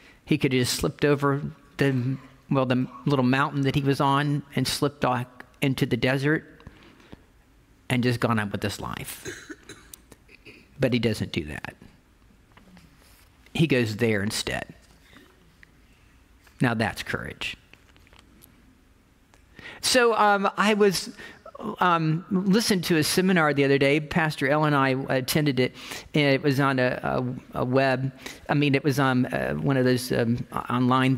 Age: 50-69